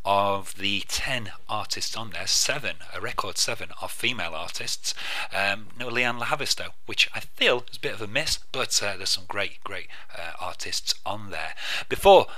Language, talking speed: English, 190 wpm